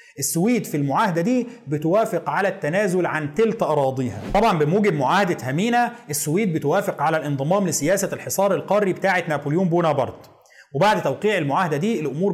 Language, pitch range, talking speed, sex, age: Arabic, 150-215 Hz, 140 wpm, male, 30-49